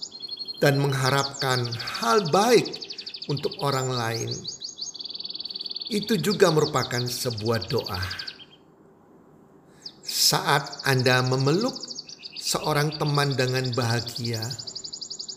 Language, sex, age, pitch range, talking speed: Indonesian, male, 50-69, 130-170 Hz, 75 wpm